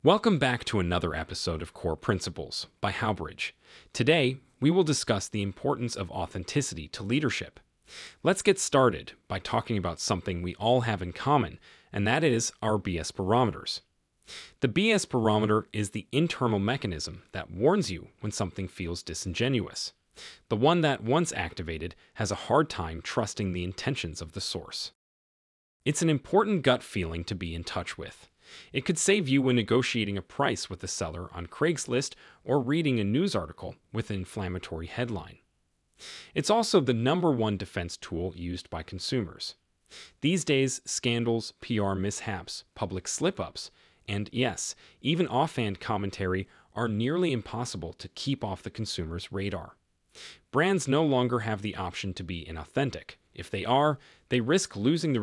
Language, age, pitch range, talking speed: English, 30-49, 90-130 Hz, 160 wpm